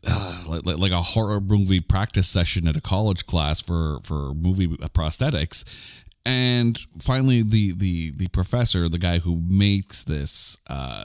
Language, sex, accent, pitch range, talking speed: English, male, American, 85-120 Hz, 145 wpm